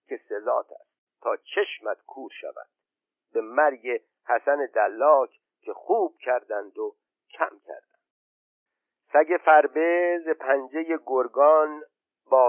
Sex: male